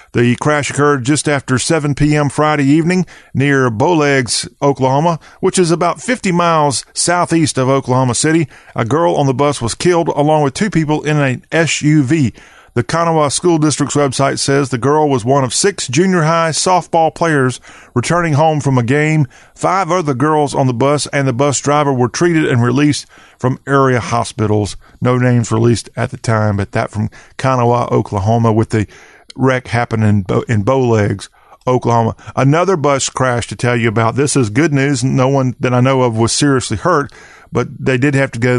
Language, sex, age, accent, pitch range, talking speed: English, male, 40-59, American, 125-150 Hz, 185 wpm